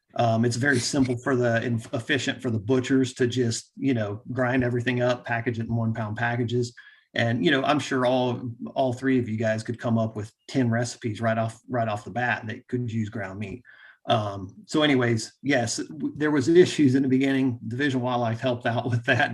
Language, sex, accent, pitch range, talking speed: English, male, American, 110-130 Hz, 215 wpm